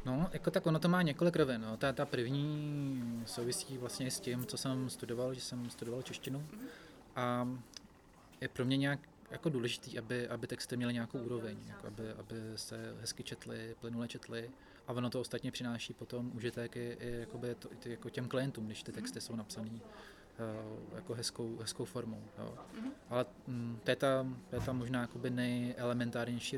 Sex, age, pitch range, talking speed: male, 20-39, 120-130 Hz, 170 wpm